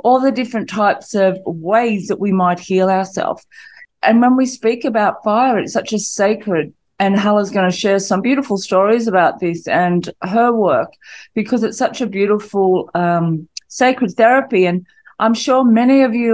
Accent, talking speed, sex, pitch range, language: Australian, 175 wpm, female, 180-215 Hz, English